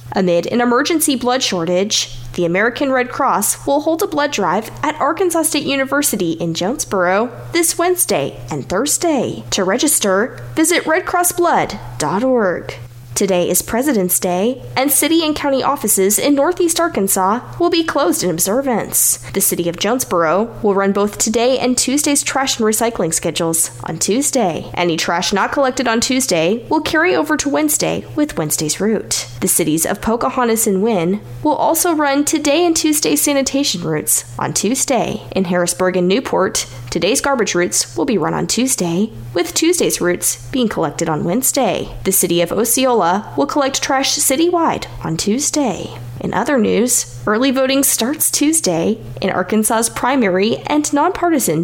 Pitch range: 175-285 Hz